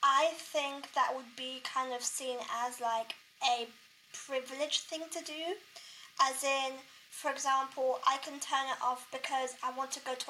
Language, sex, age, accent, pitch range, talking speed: English, female, 20-39, British, 245-280 Hz, 175 wpm